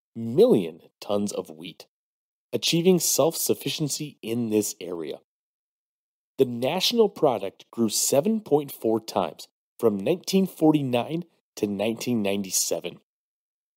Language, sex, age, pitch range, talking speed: English, male, 30-49, 105-165 Hz, 85 wpm